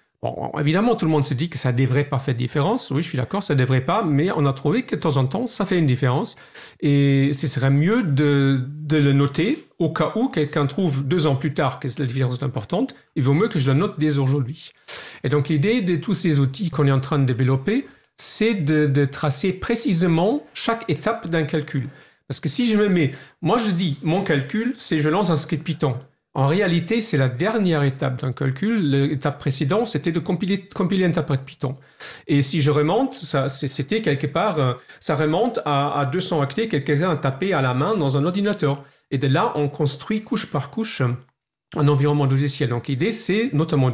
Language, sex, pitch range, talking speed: French, male, 140-175 Hz, 220 wpm